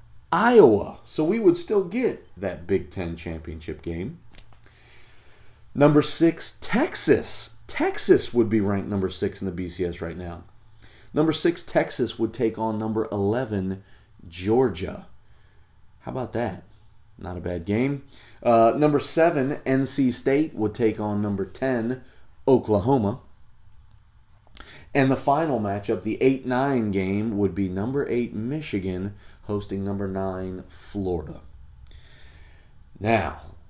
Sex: male